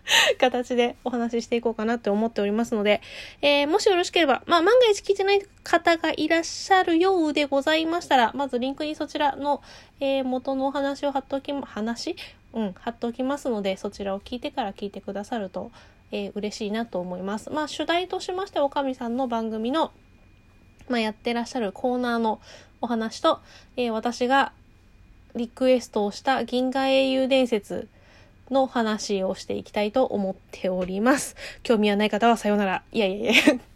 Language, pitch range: Japanese, 200-280 Hz